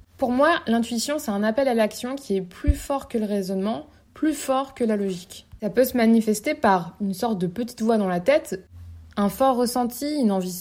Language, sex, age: French, female, 20-39